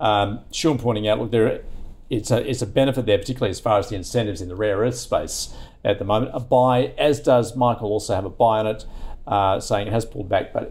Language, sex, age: English, male, 50-69